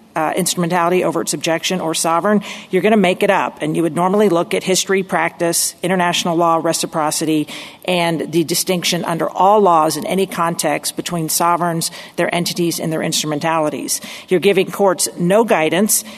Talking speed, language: 165 wpm, English